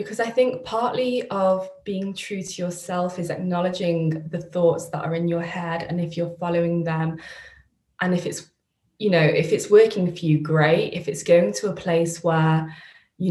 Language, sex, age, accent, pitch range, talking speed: English, female, 20-39, British, 170-200 Hz, 190 wpm